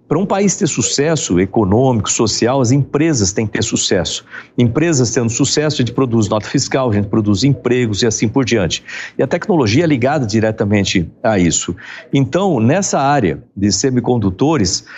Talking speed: 170 wpm